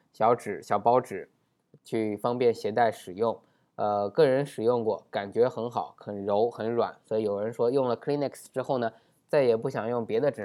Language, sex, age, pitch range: Chinese, male, 20-39, 120-150 Hz